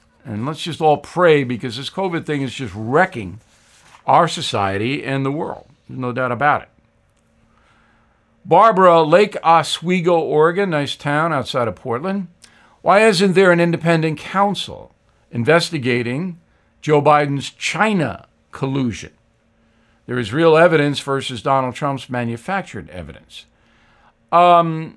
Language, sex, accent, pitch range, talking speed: English, male, American, 120-175 Hz, 125 wpm